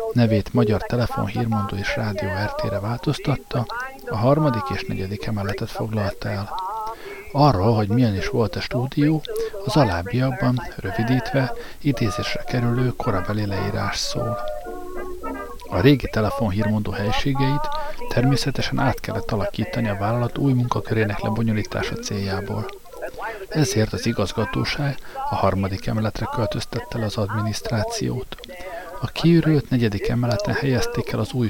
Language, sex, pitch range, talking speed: Hungarian, male, 105-140 Hz, 115 wpm